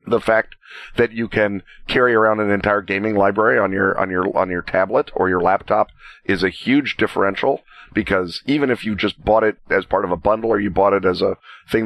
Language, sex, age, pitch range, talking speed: English, male, 40-59, 100-115 Hz, 230 wpm